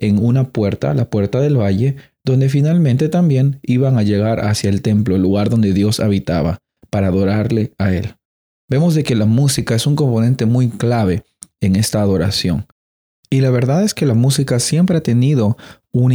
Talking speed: 180 wpm